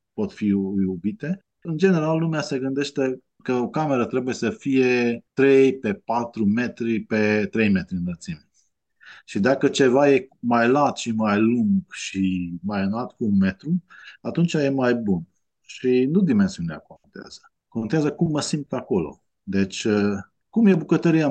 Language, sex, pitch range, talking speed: Romanian, male, 105-160 Hz, 155 wpm